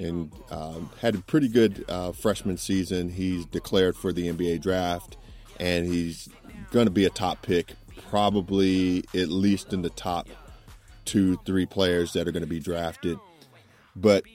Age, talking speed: 30-49, 165 wpm